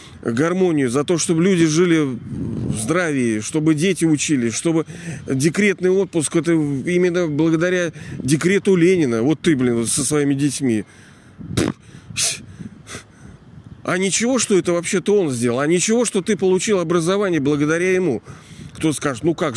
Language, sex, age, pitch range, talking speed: Russian, male, 40-59, 145-180 Hz, 135 wpm